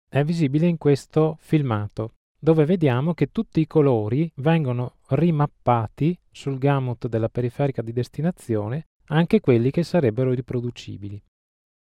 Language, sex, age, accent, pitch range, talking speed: Italian, male, 20-39, native, 120-150 Hz, 120 wpm